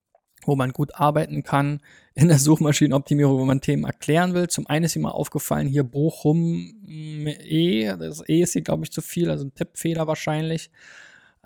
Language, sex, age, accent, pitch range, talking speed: German, male, 20-39, German, 135-165 Hz, 180 wpm